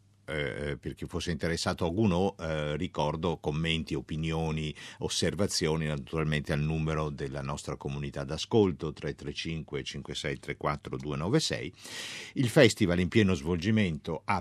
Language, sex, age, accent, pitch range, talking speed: Italian, male, 50-69, native, 80-110 Hz, 110 wpm